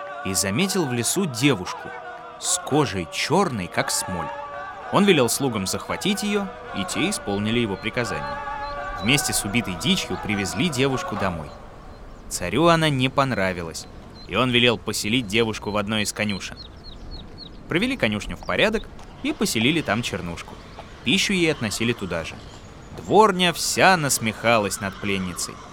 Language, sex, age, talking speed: Russian, male, 20-39, 135 wpm